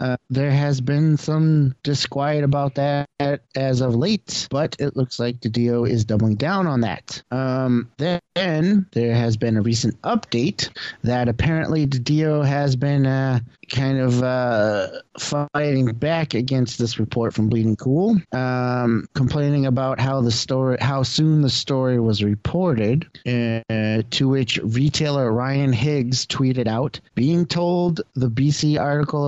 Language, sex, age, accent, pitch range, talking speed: English, male, 30-49, American, 120-145 Hz, 150 wpm